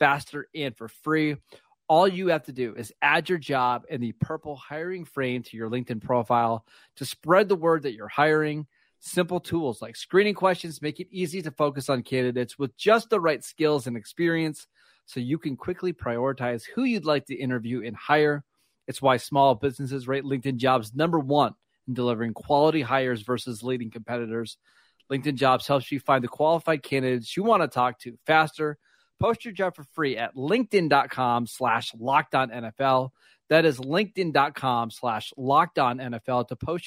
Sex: male